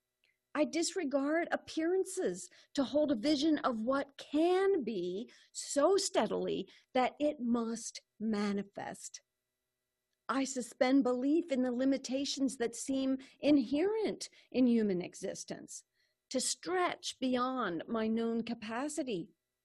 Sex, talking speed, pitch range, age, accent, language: female, 105 wpm, 215-305 Hz, 50-69, American, English